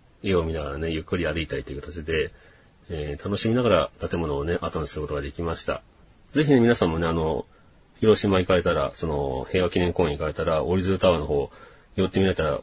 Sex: male